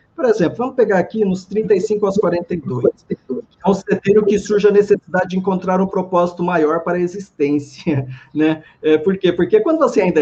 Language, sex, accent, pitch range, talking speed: Portuguese, male, Brazilian, 155-195 Hz, 180 wpm